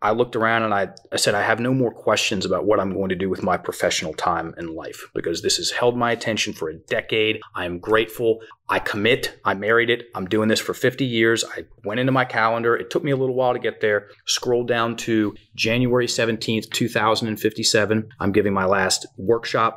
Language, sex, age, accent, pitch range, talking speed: English, male, 30-49, American, 110-125 Hz, 220 wpm